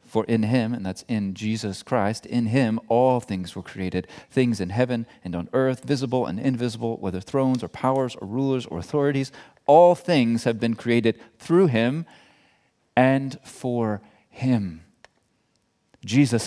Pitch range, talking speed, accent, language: 105-140 Hz, 155 wpm, American, English